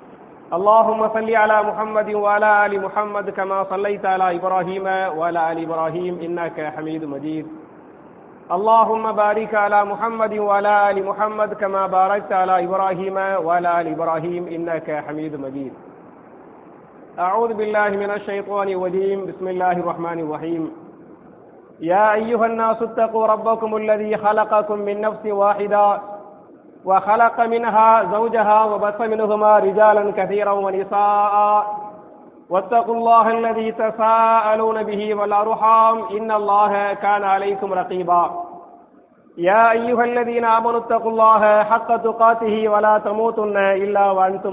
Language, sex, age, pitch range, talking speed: English, male, 40-59, 195-225 Hz, 115 wpm